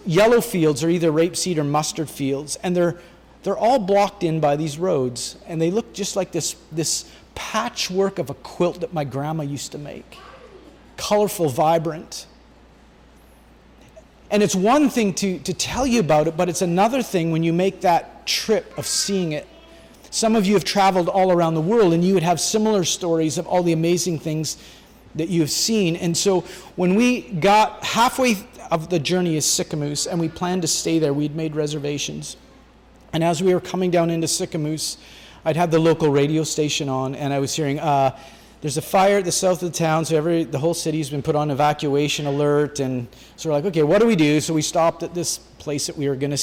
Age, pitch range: 30-49, 150-180 Hz